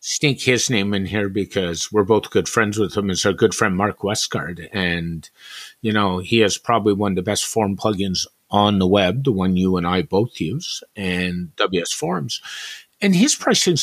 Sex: male